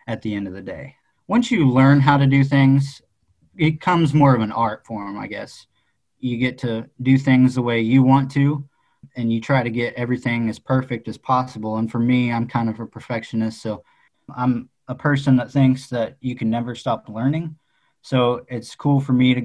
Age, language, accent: 20-39, English, American